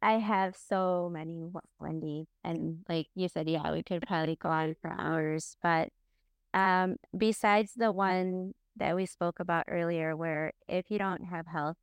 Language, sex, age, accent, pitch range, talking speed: English, female, 20-39, American, 165-190 Hz, 165 wpm